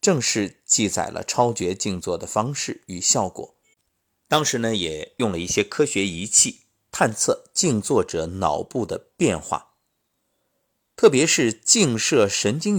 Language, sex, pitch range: Chinese, male, 90-135 Hz